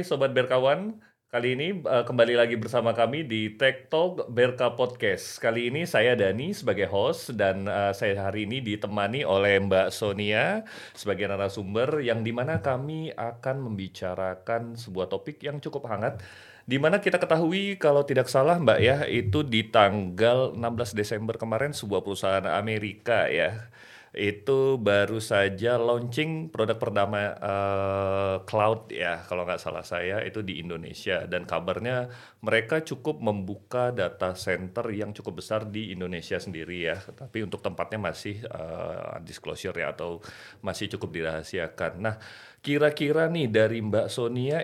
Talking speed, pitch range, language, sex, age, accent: 140 wpm, 100-135 Hz, Indonesian, male, 30-49, native